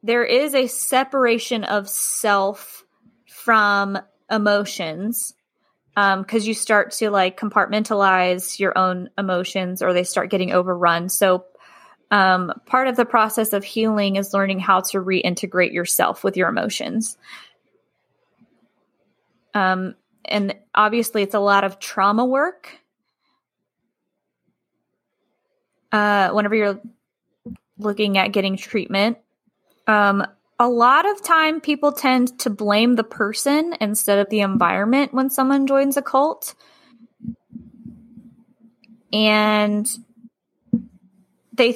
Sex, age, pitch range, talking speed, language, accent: female, 20-39, 200-245 Hz, 110 wpm, English, American